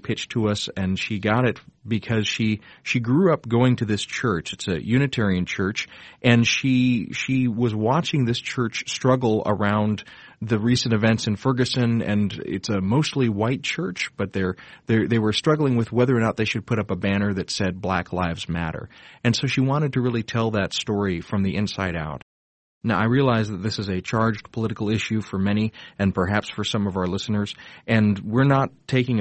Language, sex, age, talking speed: English, male, 40-59, 200 wpm